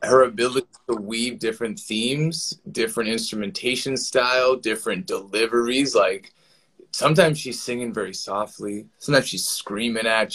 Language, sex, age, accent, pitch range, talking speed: English, male, 20-39, American, 110-145 Hz, 120 wpm